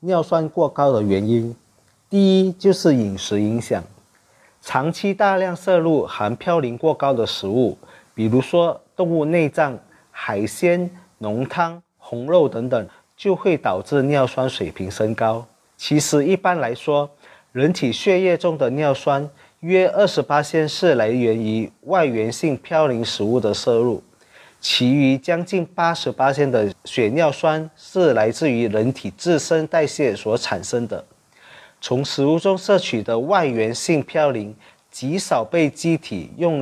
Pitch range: 120-170 Hz